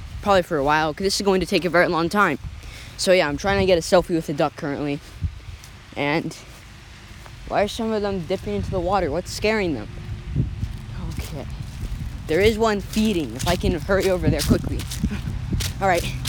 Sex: female